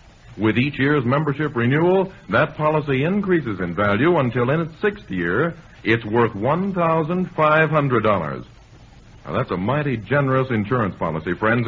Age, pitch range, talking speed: 60-79, 115-160 Hz, 135 wpm